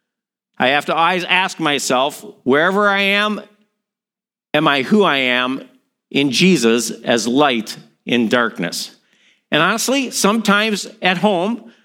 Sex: male